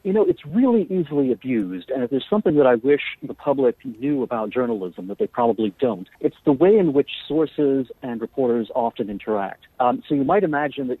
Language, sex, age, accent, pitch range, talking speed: English, male, 50-69, American, 125-175 Hz, 205 wpm